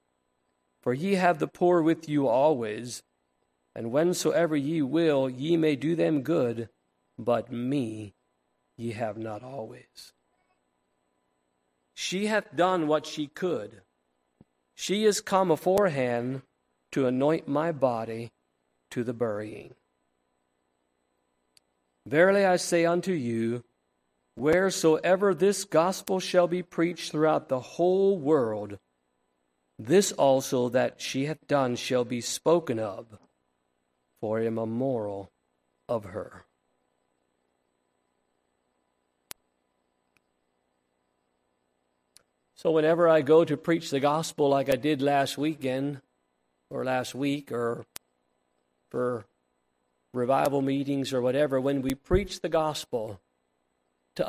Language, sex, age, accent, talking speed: English, male, 50-69, American, 110 wpm